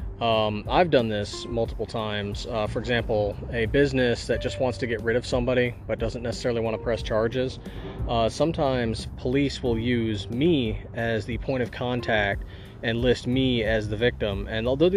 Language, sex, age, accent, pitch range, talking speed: English, male, 30-49, American, 105-125 Hz, 180 wpm